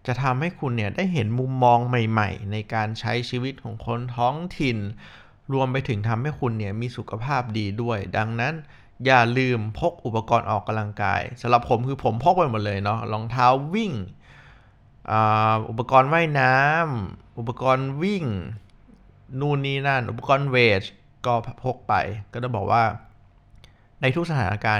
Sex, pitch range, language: male, 110-135 Hz, Thai